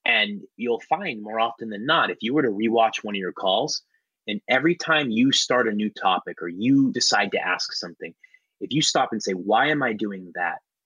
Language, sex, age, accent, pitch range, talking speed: English, male, 30-49, American, 105-160 Hz, 220 wpm